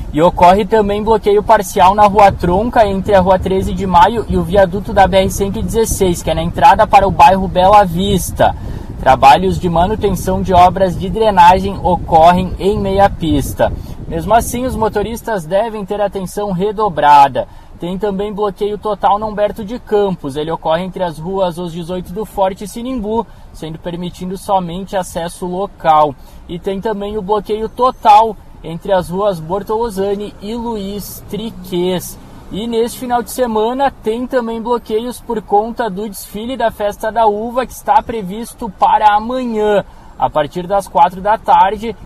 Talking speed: 155 wpm